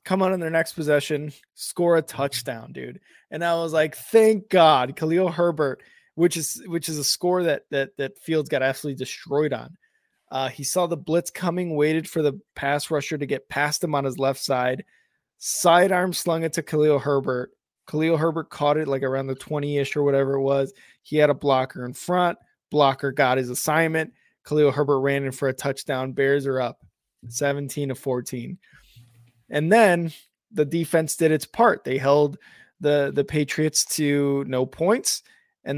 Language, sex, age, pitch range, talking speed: English, male, 20-39, 140-180 Hz, 180 wpm